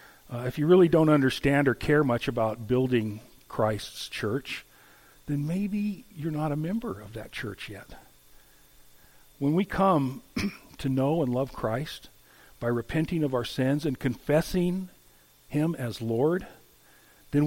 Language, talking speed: English, 145 wpm